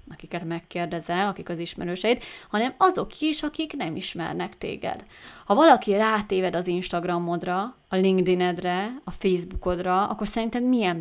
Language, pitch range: Hungarian, 175-205 Hz